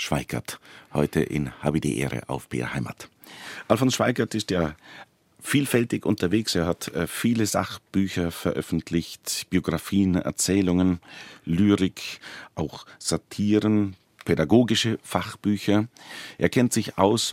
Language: German